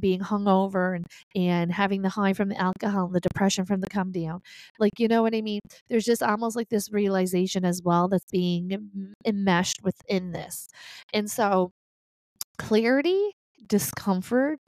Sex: female